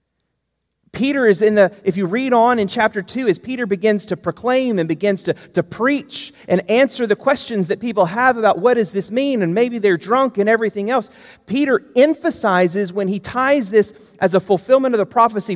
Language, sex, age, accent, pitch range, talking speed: English, male, 30-49, American, 165-235 Hz, 205 wpm